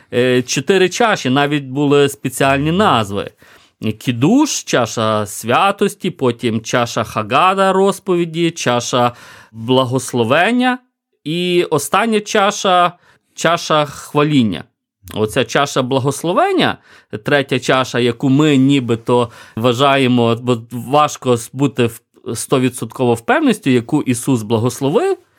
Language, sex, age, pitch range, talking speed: Ukrainian, male, 30-49, 120-160 Hz, 85 wpm